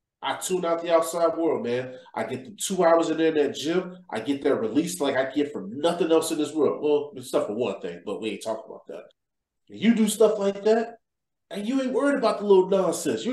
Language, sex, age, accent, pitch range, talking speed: English, male, 30-49, American, 160-225 Hz, 250 wpm